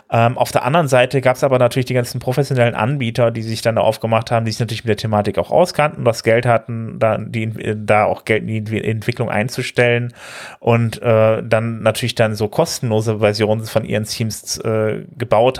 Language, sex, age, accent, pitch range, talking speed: German, male, 30-49, German, 110-125 Hz, 190 wpm